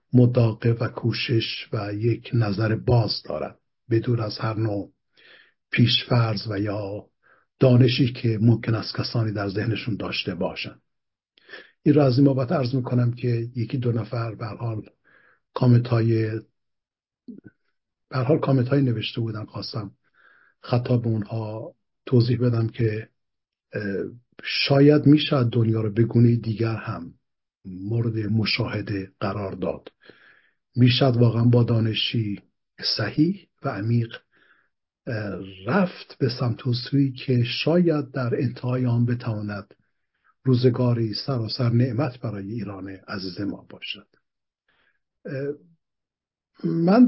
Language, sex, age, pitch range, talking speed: Persian, male, 60-79, 110-135 Hz, 110 wpm